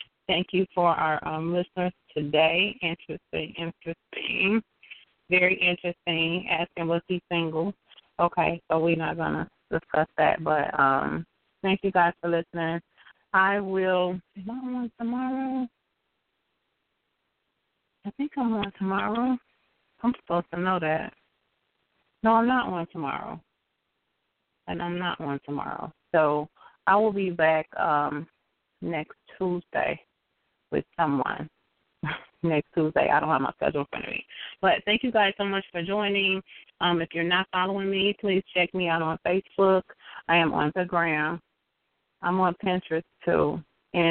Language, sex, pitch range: English, female, 165-195 Hz